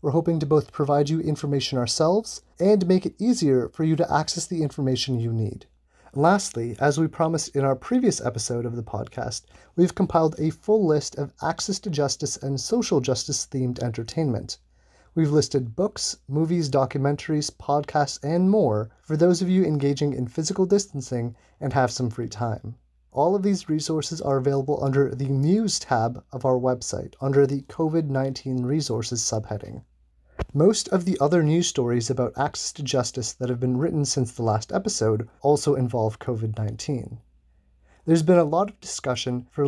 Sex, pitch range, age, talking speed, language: male, 125-160 Hz, 30-49, 170 wpm, English